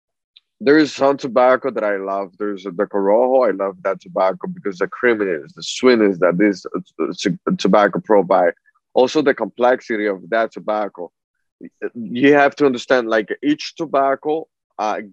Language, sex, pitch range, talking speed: English, male, 105-130 Hz, 150 wpm